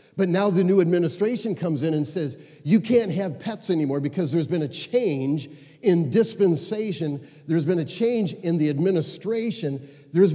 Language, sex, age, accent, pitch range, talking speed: English, male, 50-69, American, 150-190 Hz, 170 wpm